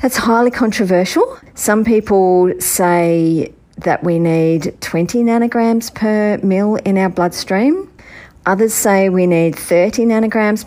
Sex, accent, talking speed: female, Australian, 125 wpm